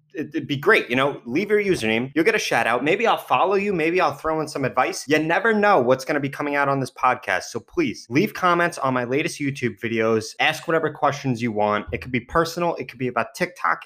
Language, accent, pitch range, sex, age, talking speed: English, American, 130-155 Hz, male, 20-39, 250 wpm